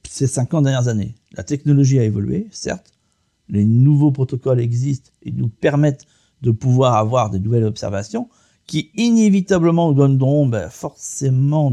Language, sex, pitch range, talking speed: French, male, 105-150 Hz, 135 wpm